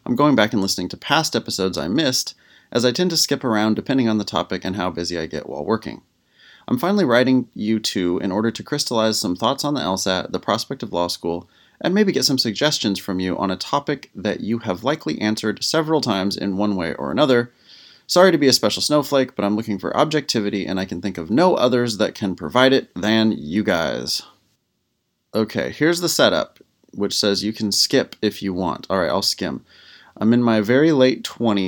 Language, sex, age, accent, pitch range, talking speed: English, male, 30-49, American, 95-125 Hz, 215 wpm